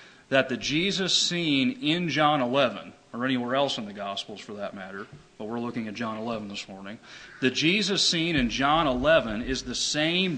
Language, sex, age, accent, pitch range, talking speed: English, male, 40-59, American, 125-160 Hz, 190 wpm